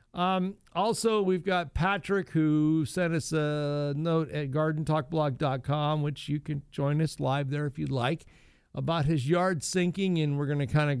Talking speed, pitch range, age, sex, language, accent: 175 wpm, 140-170 Hz, 50-69, male, English, American